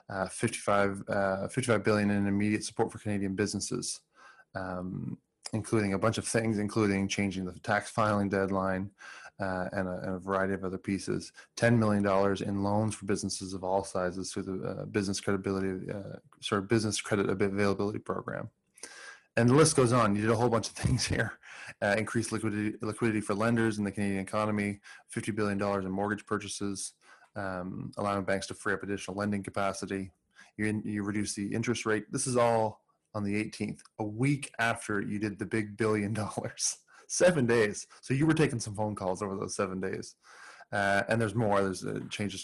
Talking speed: 185 wpm